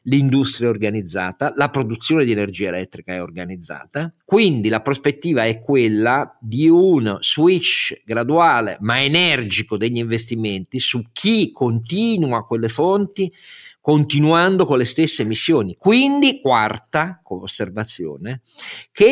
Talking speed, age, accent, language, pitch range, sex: 120 wpm, 50-69, native, Italian, 110-160 Hz, male